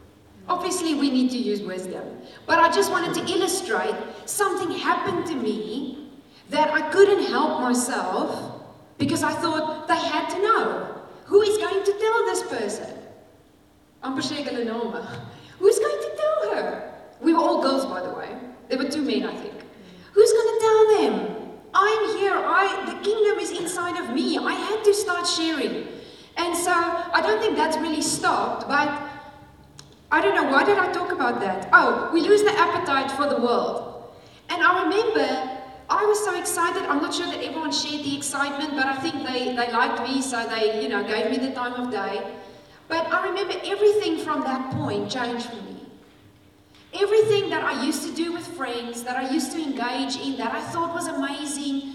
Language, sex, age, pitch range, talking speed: English, female, 30-49, 265-355 Hz, 185 wpm